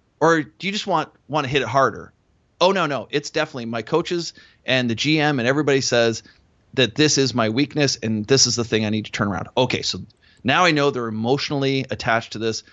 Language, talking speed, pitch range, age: English, 225 wpm, 110-145 Hz, 30-49